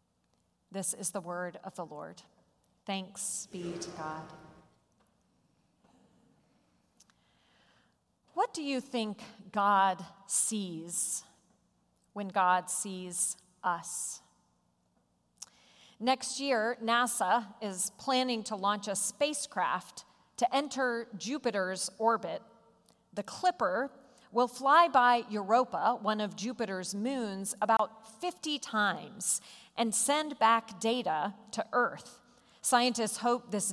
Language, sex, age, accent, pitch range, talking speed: English, female, 40-59, American, 195-250 Hz, 100 wpm